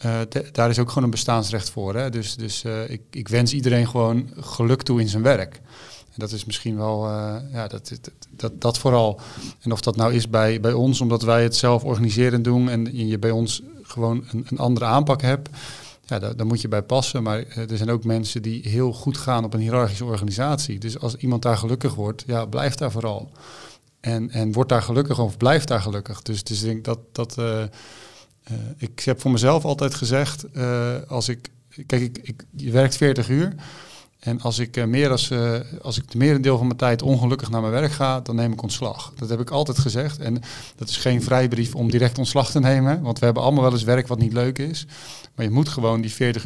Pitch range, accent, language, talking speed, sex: 115-130 Hz, Dutch, Dutch, 225 wpm, male